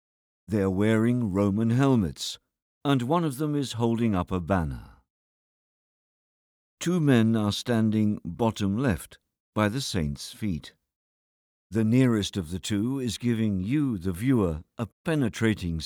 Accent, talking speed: British, 130 wpm